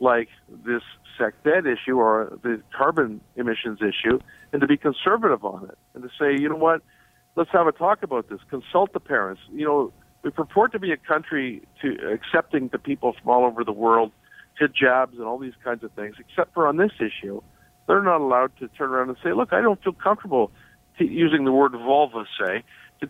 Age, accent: 50-69, American